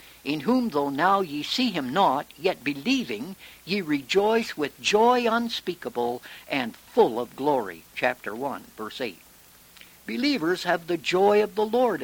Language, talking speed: English, 150 wpm